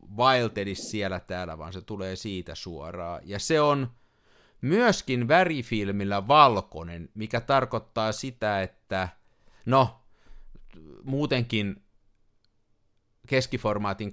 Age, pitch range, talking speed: 50-69, 100-135 Hz, 90 wpm